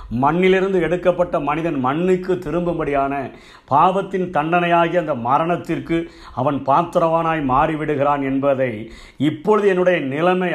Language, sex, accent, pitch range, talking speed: Tamil, male, native, 140-180 Hz, 90 wpm